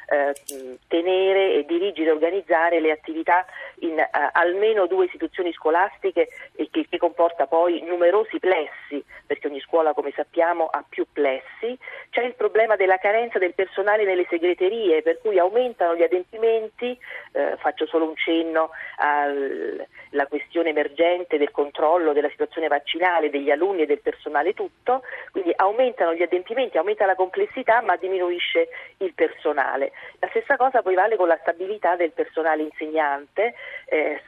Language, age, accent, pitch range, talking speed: Italian, 40-59, native, 160-245 Hz, 145 wpm